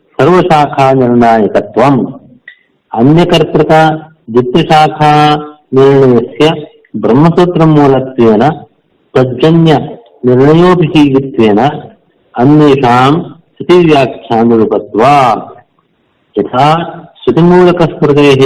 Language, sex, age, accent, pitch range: Kannada, male, 50-69, native, 120-155 Hz